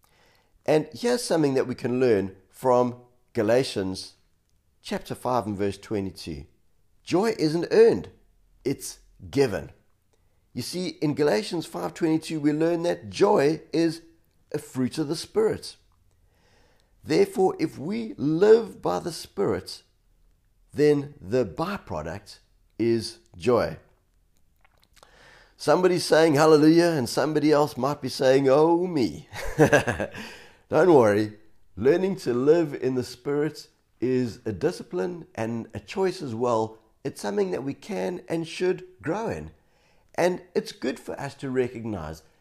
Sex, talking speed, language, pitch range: male, 125 wpm, English, 100-160 Hz